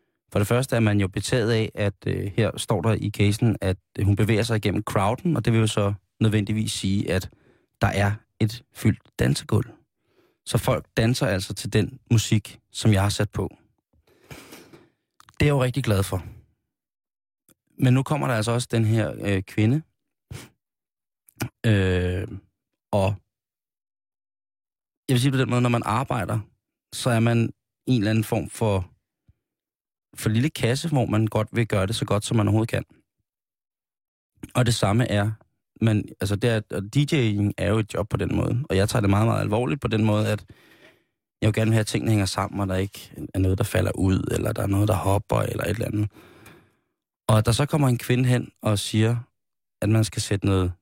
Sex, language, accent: male, Danish, native